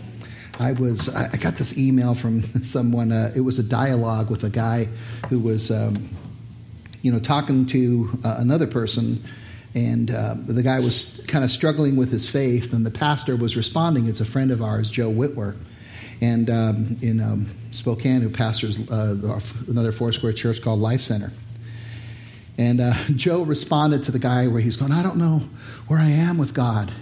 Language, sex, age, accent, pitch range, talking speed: English, male, 50-69, American, 115-140 Hz, 180 wpm